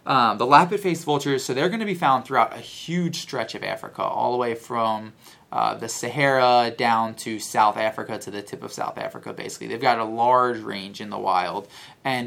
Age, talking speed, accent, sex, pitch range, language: 20-39, 210 wpm, American, male, 105-135 Hz, English